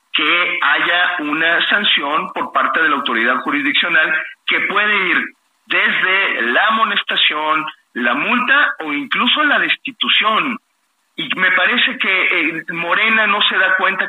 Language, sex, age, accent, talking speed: Spanish, male, 50-69, Mexican, 135 wpm